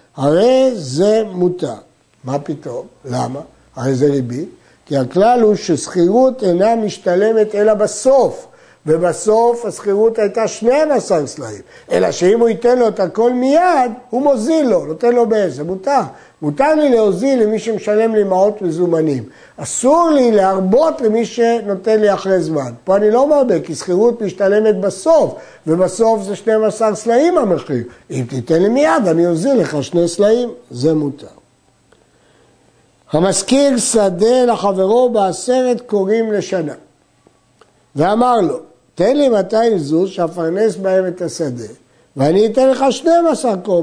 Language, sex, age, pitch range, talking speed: Hebrew, male, 60-79, 175-240 Hz, 135 wpm